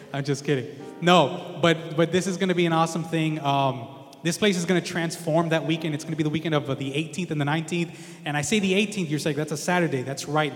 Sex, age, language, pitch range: male, 20-39, English, 140-175 Hz